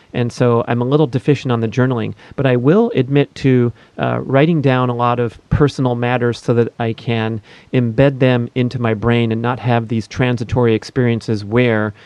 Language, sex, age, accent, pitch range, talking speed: English, male, 40-59, American, 120-155 Hz, 190 wpm